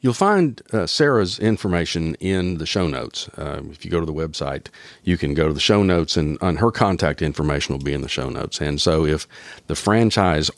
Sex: male